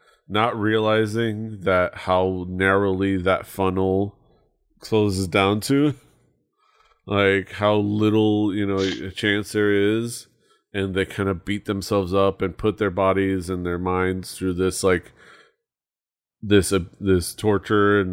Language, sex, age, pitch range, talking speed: English, male, 30-49, 95-110 Hz, 135 wpm